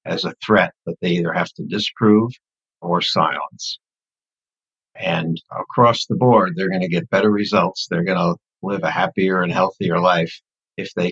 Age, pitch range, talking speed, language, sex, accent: 60-79, 105-125 Hz, 175 wpm, English, male, American